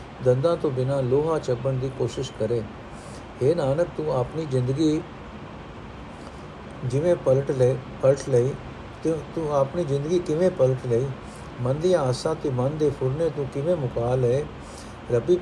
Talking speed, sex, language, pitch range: 130 wpm, male, Punjabi, 125-155 Hz